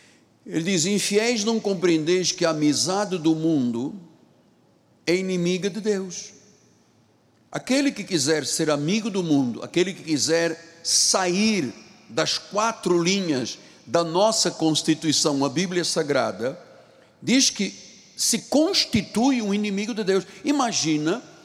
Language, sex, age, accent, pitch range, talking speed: Portuguese, male, 60-79, Brazilian, 160-225 Hz, 120 wpm